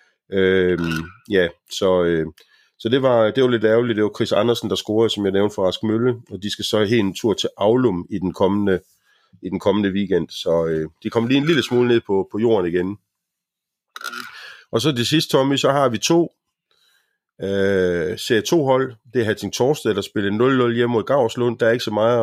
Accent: native